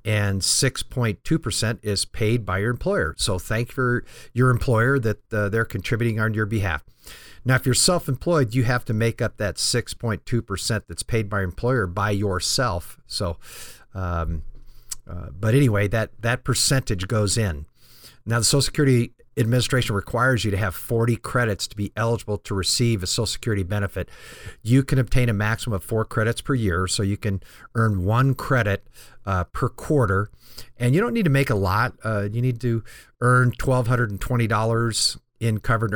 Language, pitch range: English, 100-120 Hz